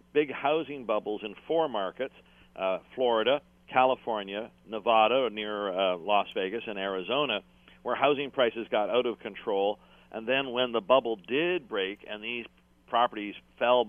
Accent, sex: American, male